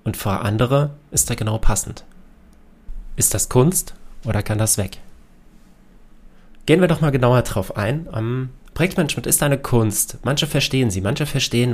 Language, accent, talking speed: German, German, 155 wpm